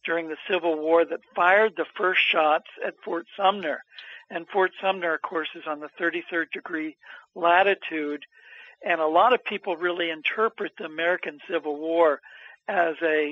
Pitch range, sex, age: 155-190 Hz, male, 60-79